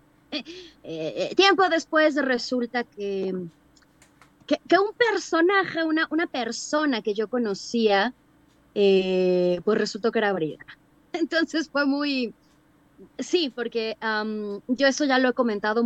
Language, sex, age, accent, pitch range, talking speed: Spanish, female, 20-39, Mexican, 195-275 Hz, 130 wpm